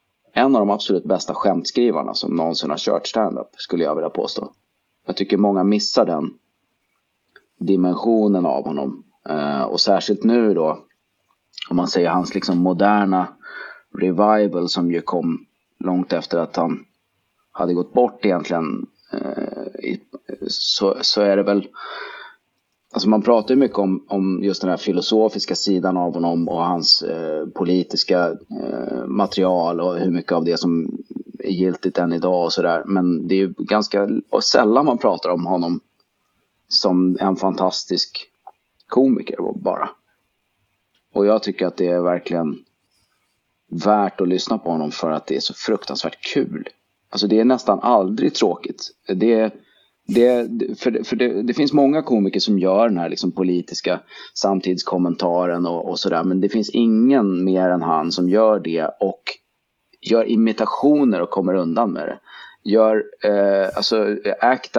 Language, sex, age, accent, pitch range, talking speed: Swedish, male, 30-49, native, 90-105 Hz, 150 wpm